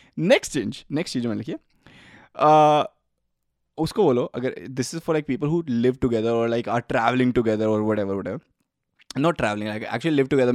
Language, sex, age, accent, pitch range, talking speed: Hindi, male, 20-39, native, 130-190 Hz, 85 wpm